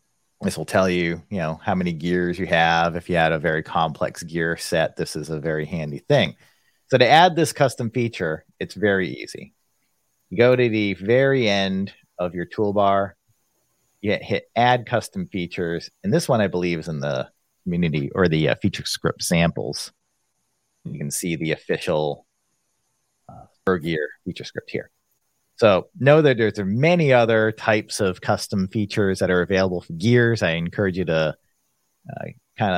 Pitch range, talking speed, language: 85-110 Hz, 175 wpm, English